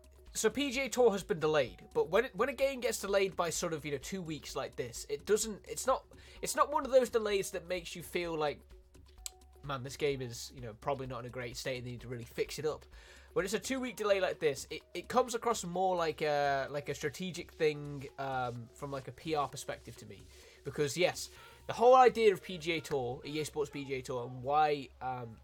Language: Italian